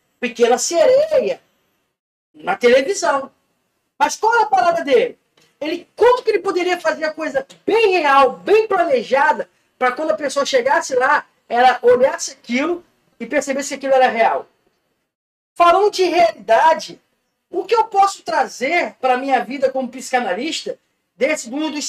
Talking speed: 150 wpm